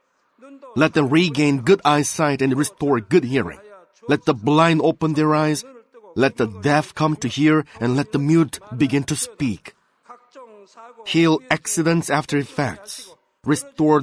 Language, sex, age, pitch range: Korean, male, 30-49, 140-170 Hz